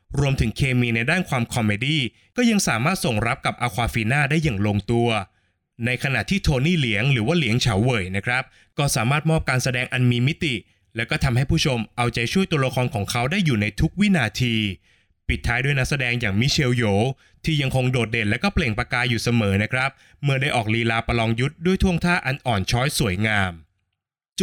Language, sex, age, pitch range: Thai, male, 20-39, 115-155 Hz